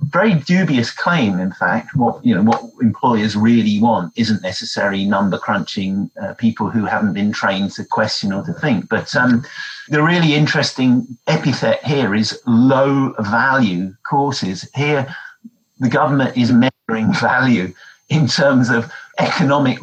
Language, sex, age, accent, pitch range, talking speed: English, male, 50-69, British, 115-150 Hz, 145 wpm